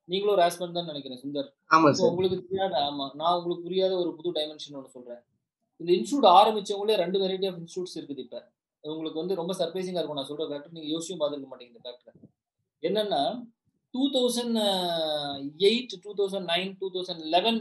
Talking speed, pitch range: 50 wpm, 155-200 Hz